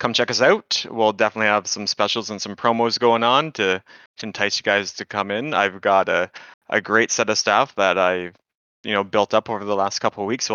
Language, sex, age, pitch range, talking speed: English, male, 20-39, 100-115 Hz, 235 wpm